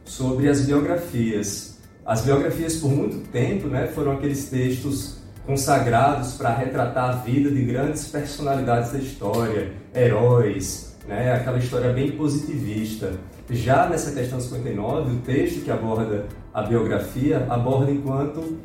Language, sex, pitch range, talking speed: Portuguese, male, 110-145 Hz, 130 wpm